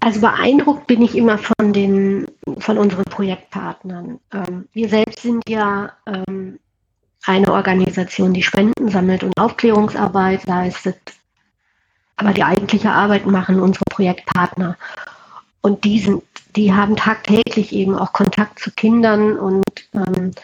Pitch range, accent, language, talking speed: 185-215 Hz, German, German, 120 wpm